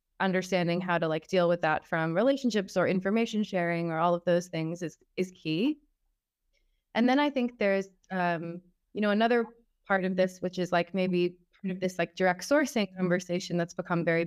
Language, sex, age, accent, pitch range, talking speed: English, female, 20-39, American, 170-200 Hz, 195 wpm